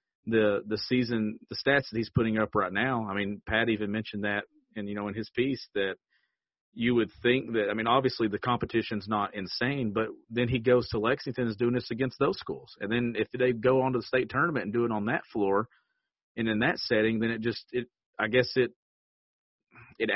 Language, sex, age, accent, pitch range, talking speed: English, male, 40-59, American, 105-120 Hz, 225 wpm